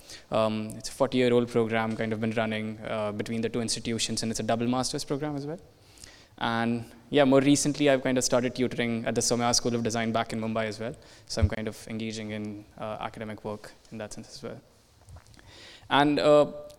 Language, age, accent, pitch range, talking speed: English, 20-39, Indian, 110-125 Hz, 205 wpm